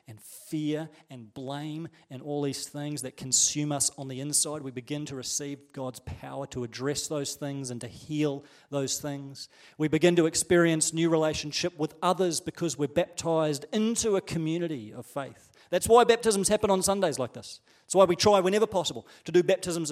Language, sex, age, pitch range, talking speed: English, male, 40-59, 135-175 Hz, 185 wpm